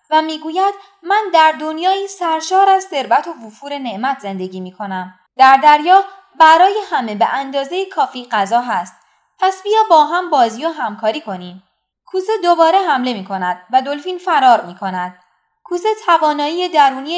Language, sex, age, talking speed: Persian, female, 20-39, 150 wpm